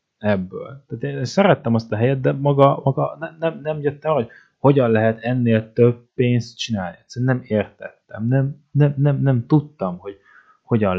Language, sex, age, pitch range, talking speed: Hungarian, male, 20-39, 100-135 Hz, 170 wpm